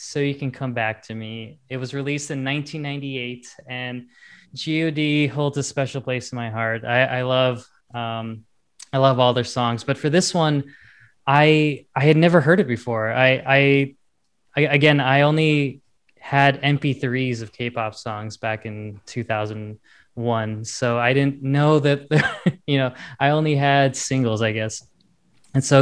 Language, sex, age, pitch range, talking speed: English, male, 20-39, 115-140 Hz, 165 wpm